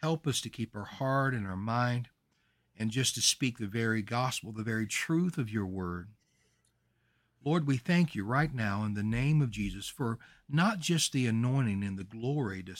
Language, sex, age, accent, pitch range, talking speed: English, male, 60-79, American, 110-150 Hz, 195 wpm